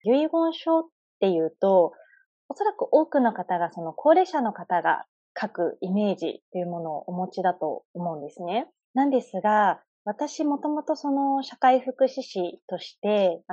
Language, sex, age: Japanese, female, 30-49